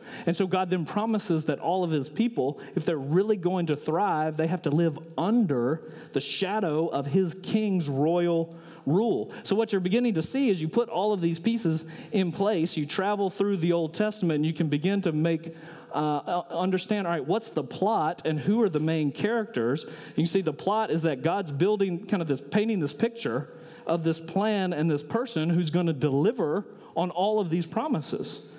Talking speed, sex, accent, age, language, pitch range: 205 wpm, male, American, 40-59, English, 155-200 Hz